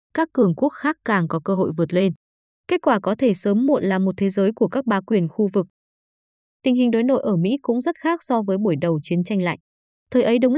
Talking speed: 255 wpm